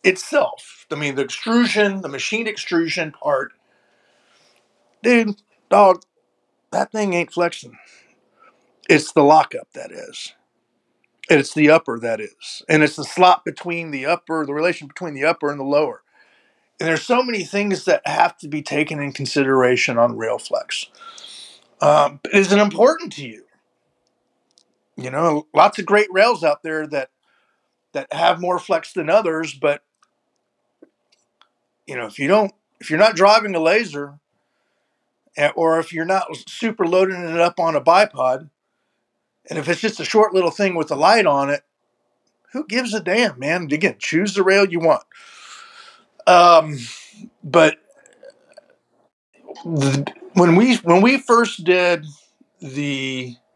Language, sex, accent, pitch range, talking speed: English, male, American, 145-205 Hz, 150 wpm